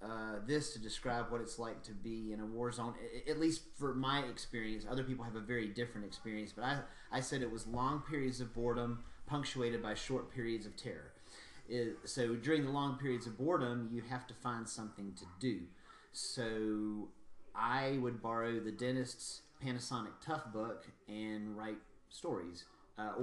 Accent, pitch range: American, 110-125 Hz